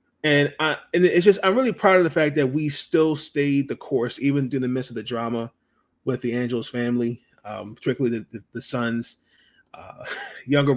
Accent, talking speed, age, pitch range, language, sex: American, 200 wpm, 30-49, 115-140 Hz, English, male